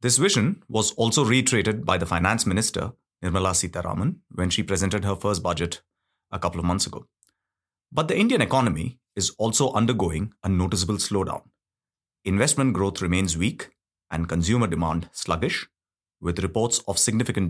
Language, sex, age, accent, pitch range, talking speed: English, male, 30-49, Indian, 90-120 Hz, 150 wpm